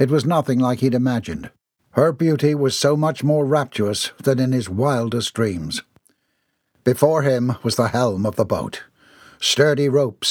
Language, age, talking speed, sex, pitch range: English, 60-79, 165 wpm, male, 115-145 Hz